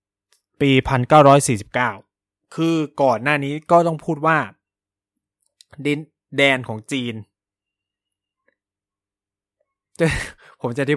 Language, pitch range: Thai, 115-150 Hz